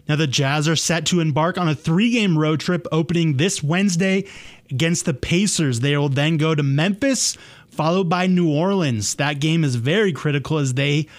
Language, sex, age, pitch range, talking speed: English, male, 20-39, 150-195 Hz, 190 wpm